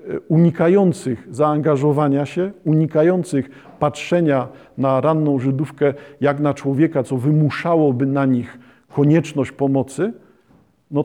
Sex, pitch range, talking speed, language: male, 135-160 Hz, 100 wpm, Polish